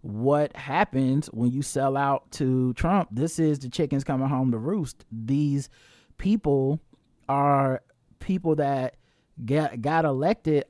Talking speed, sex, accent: 135 wpm, male, American